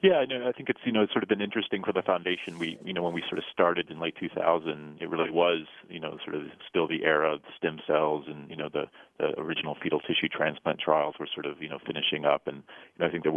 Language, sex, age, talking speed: English, male, 40-59, 285 wpm